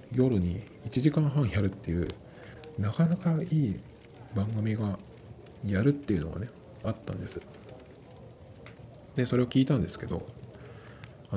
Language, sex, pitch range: Japanese, male, 100-135 Hz